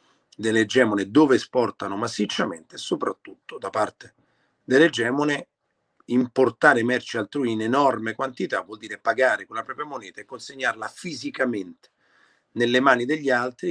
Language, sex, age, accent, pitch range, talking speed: Italian, male, 40-59, native, 105-130 Hz, 125 wpm